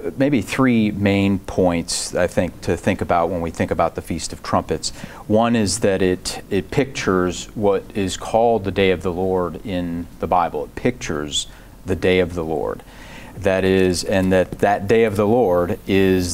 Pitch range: 90-105 Hz